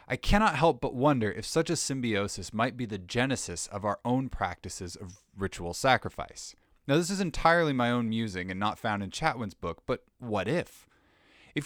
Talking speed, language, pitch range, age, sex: 190 wpm, English, 90-130 Hz, 20-39, male